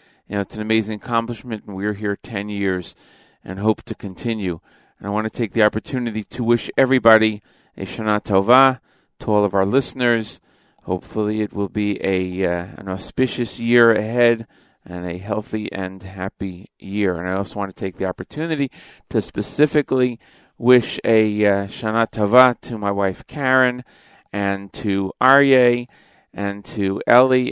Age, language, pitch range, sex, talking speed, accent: 40-59, English, 100-120 Hz, male, 160 wpm, American